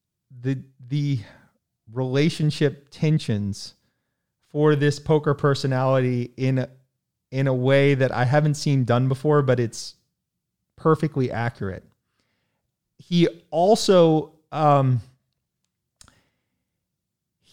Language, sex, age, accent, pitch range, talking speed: English, male, 30-49, American, 125-150 Hz, 90 wpm